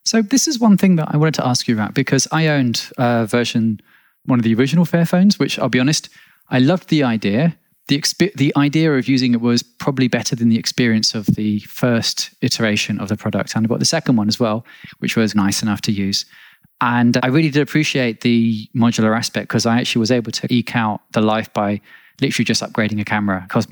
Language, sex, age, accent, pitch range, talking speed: English, male, 20-39, British, 115-140 Hz, 230 wpm